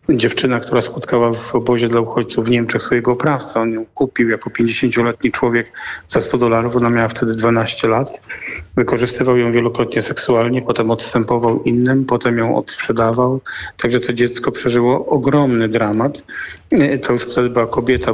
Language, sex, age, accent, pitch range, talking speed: Polish, male, 40-59, native, 115-135 Hz, 150 wpm